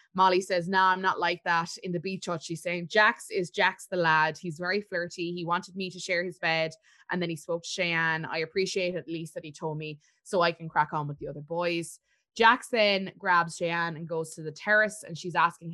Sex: female